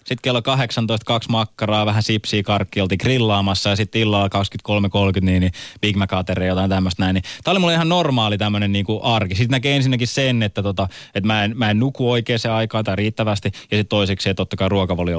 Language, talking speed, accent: Finnish, 200 wpm, native